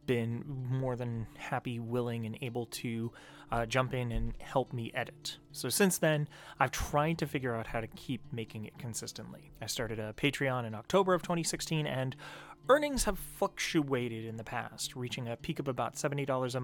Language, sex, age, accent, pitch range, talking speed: English, male, 30-49, American, 115-150 Hz, 185 wpm